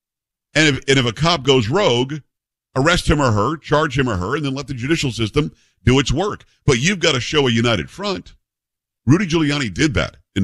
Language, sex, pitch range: English, male, 110-155 Hz